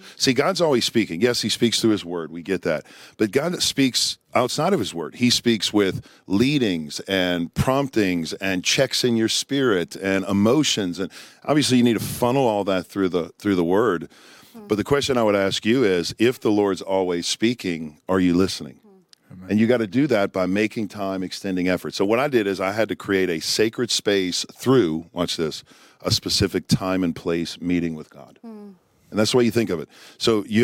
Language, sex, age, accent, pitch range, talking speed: English, male, 50-69, American, 95-125 Hz, 210 wpm